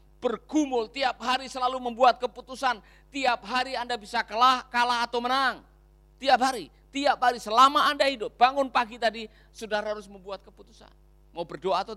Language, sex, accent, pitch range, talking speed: Indonesian, male, native, 165-235 Hz, 155 wpm